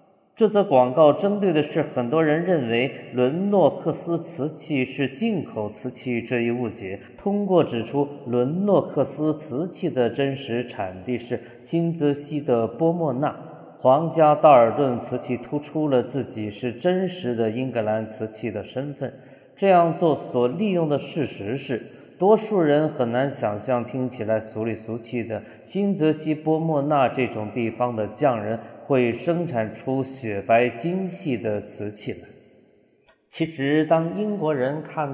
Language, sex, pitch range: Chinese, male, 115-155 Hz